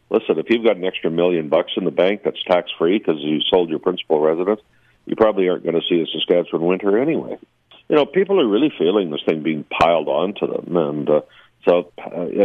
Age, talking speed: 50-69, 225 wpm